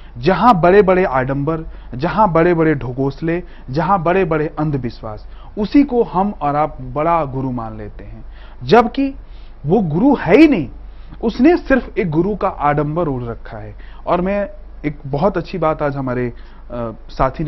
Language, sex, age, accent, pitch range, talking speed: Hindi, male, 30-49, native, 125-185 Hz, 160 wpm